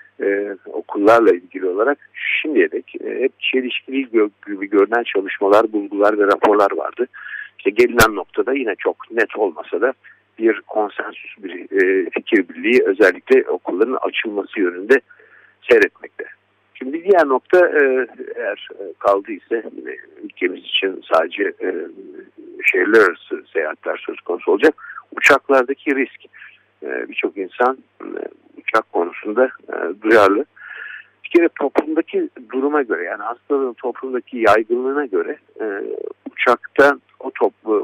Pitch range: 310-415 Hz